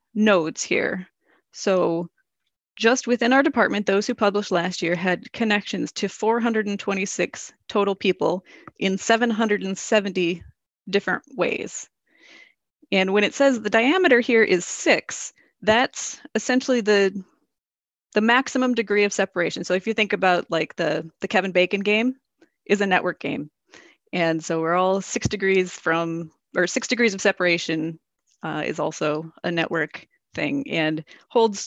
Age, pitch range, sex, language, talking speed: 30-49, 175-225 Hz, female, English, 140 wpm